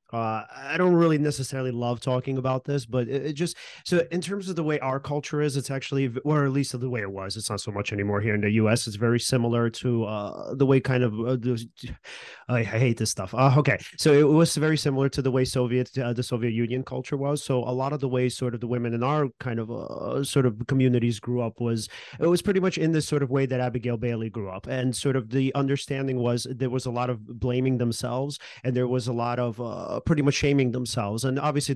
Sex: male